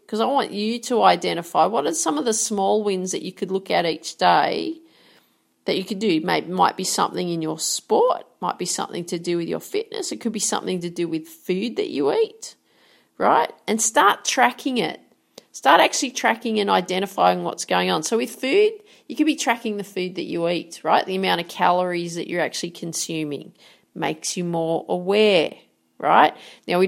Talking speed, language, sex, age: 205 wpm, English, female, 40-59